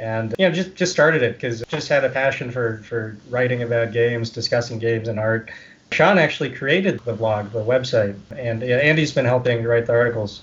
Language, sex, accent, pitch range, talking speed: English, male, American, 115-130 Hz, 205 wpm